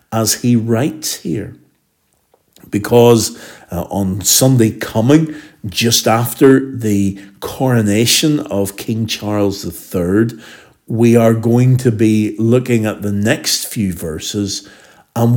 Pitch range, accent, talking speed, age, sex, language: 105-135 Hz, British, 115 wpm, 50-69, male, English